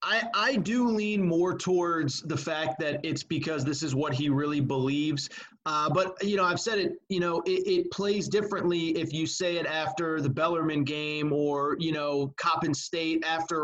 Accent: American